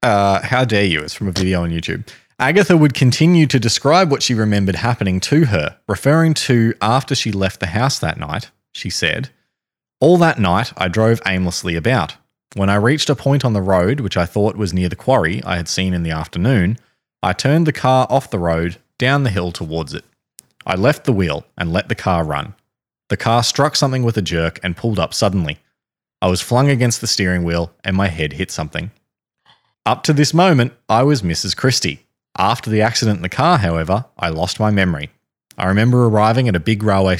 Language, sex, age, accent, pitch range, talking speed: English, male, 20-39, Australian, 90-130 Hz, 210 wpm